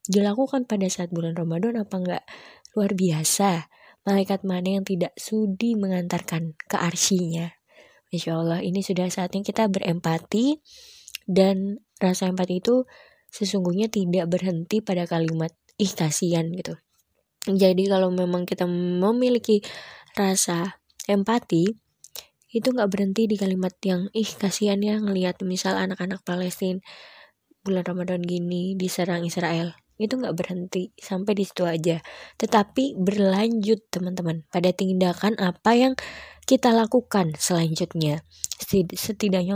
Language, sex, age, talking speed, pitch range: Indonesian, female, 20-39, 120 wpm, 175-210 Hz